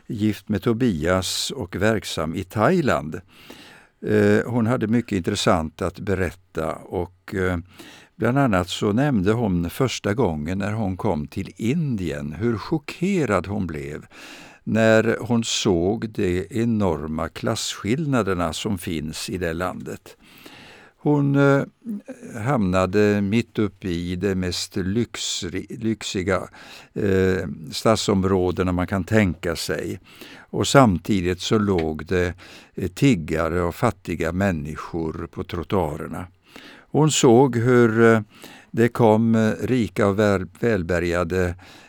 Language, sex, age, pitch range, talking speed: Swedish, male, 60-79, 90-110 Hz, 105 wpm